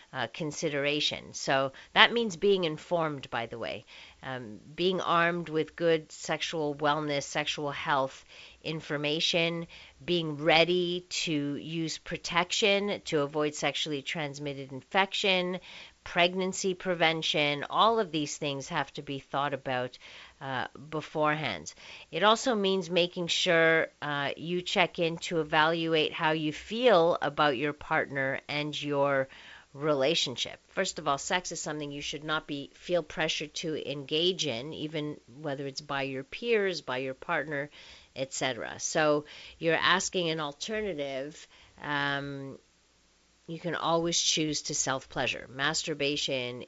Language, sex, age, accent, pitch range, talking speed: English, female, 50-69, American, 140-170 Hz, 130 wpm